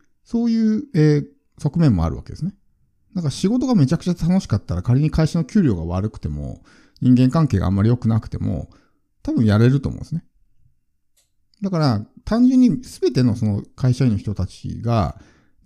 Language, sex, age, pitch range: Japanese, male, 50-69, 95-140 Hz